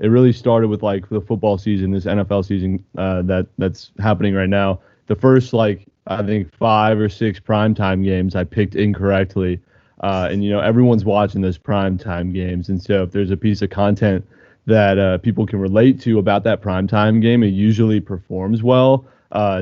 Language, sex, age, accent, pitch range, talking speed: English, male, 30-49, American, 95-110 Hz, 190 wpm